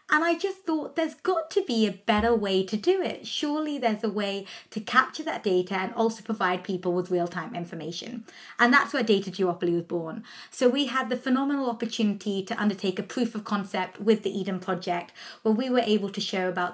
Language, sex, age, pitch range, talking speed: English, female, 20-39, 185-230 Hz, 210 wpm